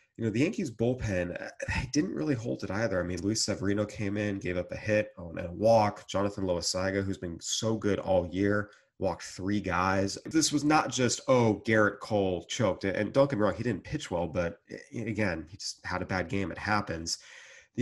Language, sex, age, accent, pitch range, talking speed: English, male, 30-49, American, 90-110 Hz, 210 wpm